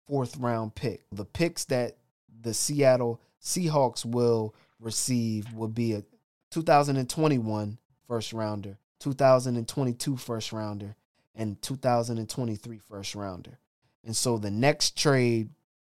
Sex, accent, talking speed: male, American, 110 wpm